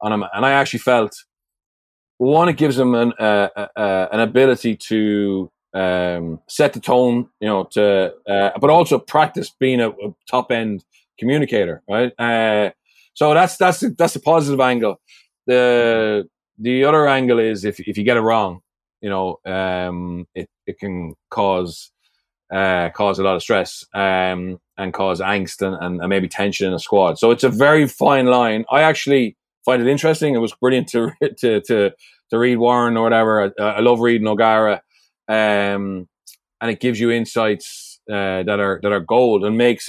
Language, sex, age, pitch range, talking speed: English, male, 30-49, 100-125 Hz, 180 wpm